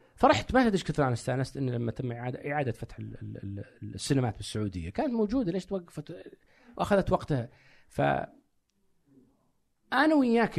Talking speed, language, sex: 125 wpm, Arabic, male